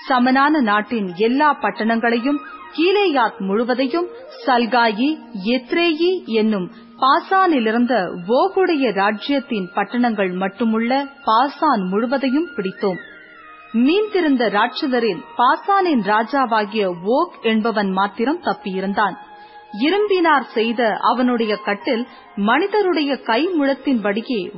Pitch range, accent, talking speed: 220-320 Hz, native, 80 wpm